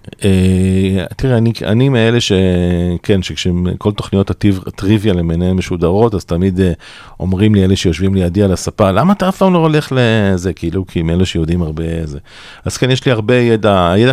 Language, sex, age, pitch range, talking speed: Hebrew, male, 40-59, 85-105 Hz, 180 wpm